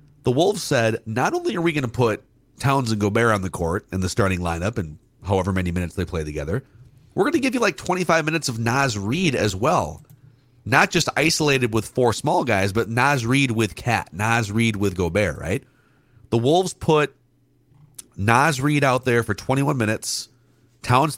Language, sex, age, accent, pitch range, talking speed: English, male, 40-59, American, 105-140 Hz, 195 wpm